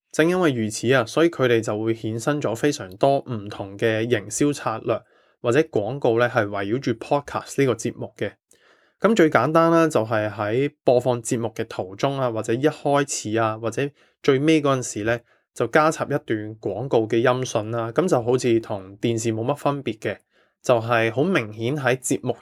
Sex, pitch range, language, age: male, 115-140 Hz, Chinese, 20-39